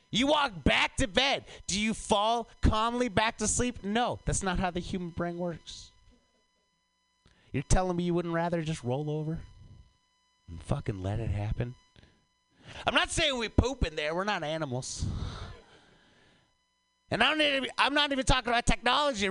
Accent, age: American, 30-49